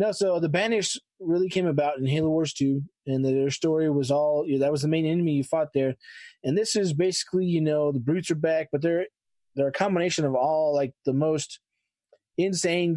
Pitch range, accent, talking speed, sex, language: 140-175 Hz, American, 210 wpm, male, English